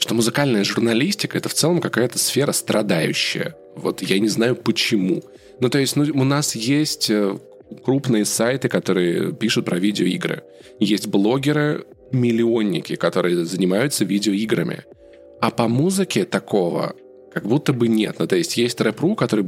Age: 20-39